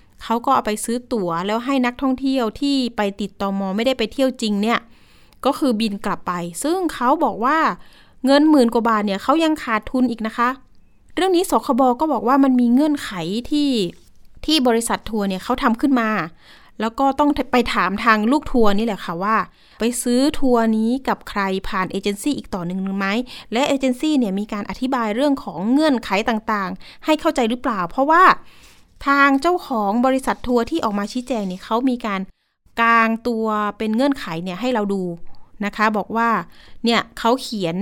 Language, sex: Thai, female